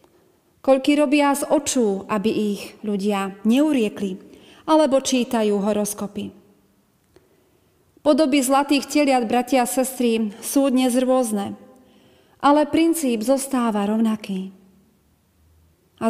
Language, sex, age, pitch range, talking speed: Slovak, female, 40-59, 215-280 Hz, 95 wpm